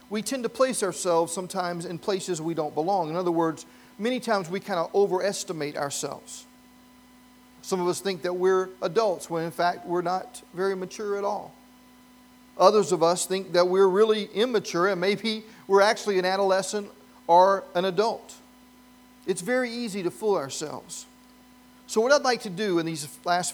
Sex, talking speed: male, 175 wpm